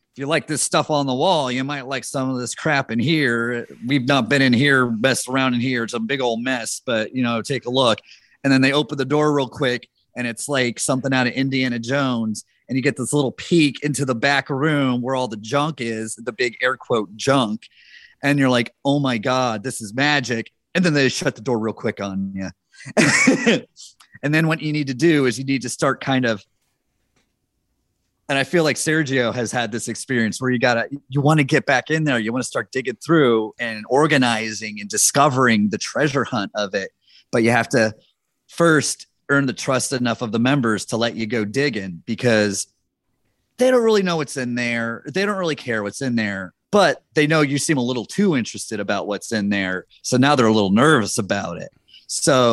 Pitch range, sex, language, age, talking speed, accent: 115-140 Hz, male, English, 30-49, 225 wpm, American